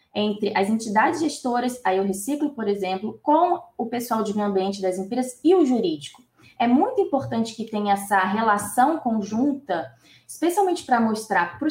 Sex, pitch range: female, 195-275 Hz